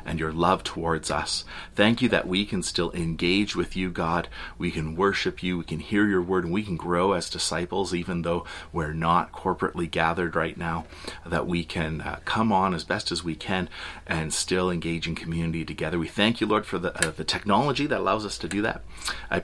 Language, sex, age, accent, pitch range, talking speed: English, male, 30-49, American, 80-95 Hz, 220 wpm